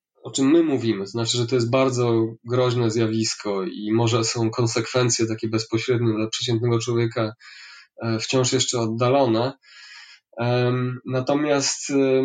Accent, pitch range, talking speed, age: native, 115-135 Hz, 120 wpm, 20-39